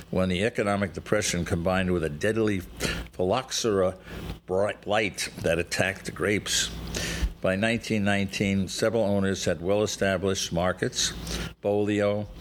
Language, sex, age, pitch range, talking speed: English, male, 60-79, 90-105 Hz, 110 wpm